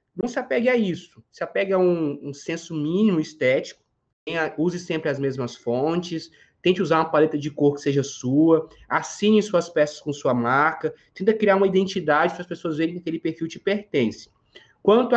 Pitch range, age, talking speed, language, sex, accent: 155-210 Hz, 20-39, 190 wpm, Portuguese, male, Brazilian